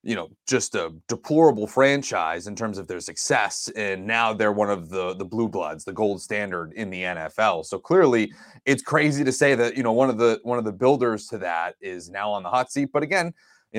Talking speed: 230 wpm